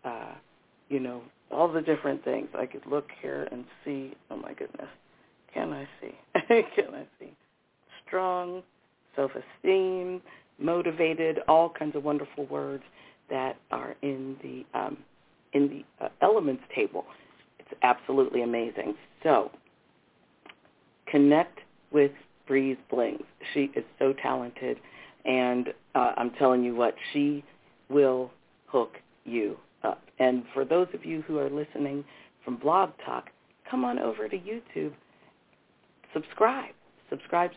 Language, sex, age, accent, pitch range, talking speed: English, female, 50-69, American, 135-175 Hz, 130 wpm